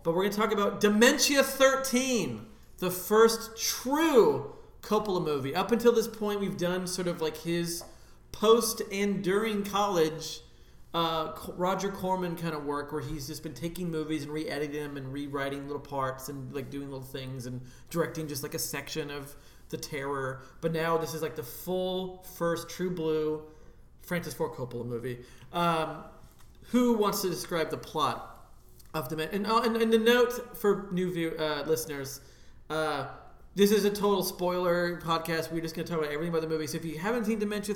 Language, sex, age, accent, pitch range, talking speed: English, male, 40-59, American, 135-180 Hz, 190 wpm